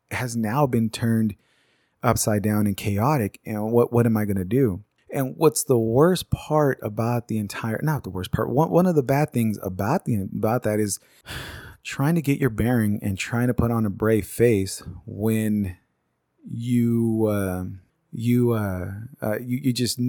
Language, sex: English, male